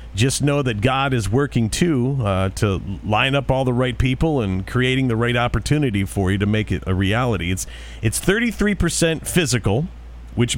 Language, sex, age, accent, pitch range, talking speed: English, male, 40-59, American, 95-130 Hz, 180 wpm